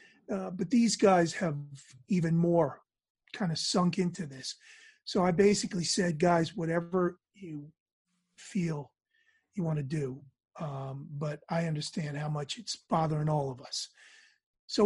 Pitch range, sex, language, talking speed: 160-220 Hz, male, English, 145 wpm